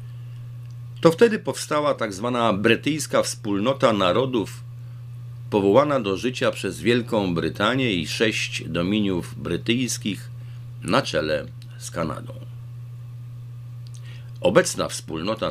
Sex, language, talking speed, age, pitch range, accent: male, Polish, 90 wpm, 50-69, 115-120 Hz, native